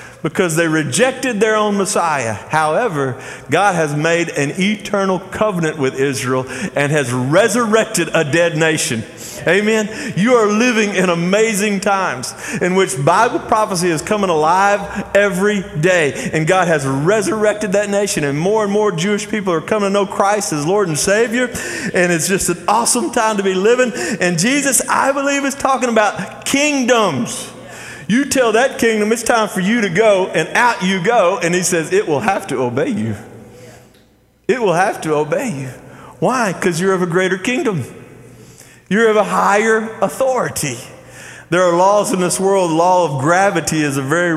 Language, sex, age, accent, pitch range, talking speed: English, male, 40-59, American, 140-205 Hz, 175 wpm